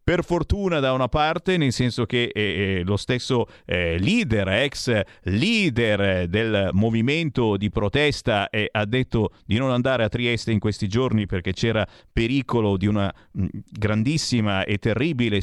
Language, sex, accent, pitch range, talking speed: Italian, male, native, 105-135 Hz, 150 wpm